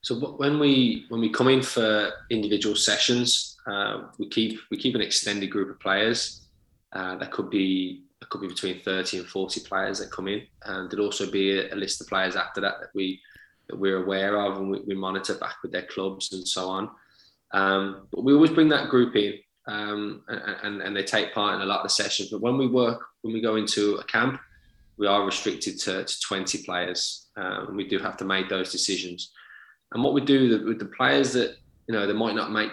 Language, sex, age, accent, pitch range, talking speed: English, male, 20-39, British, 95-110 Hz, 225 wpm